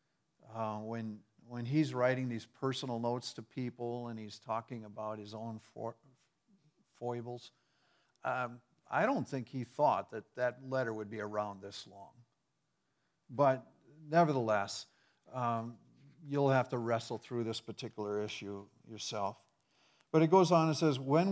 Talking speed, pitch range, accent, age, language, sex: 145 wpm, 115-145 Hz, American, 50-69, English, male